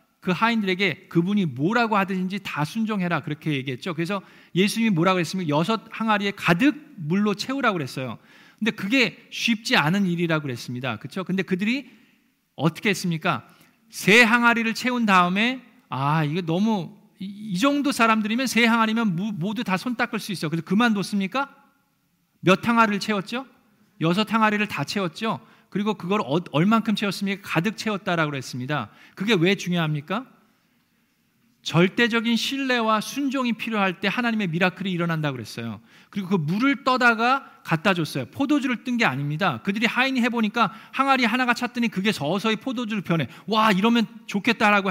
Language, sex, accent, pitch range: Korean, male, native, 180-235 Hz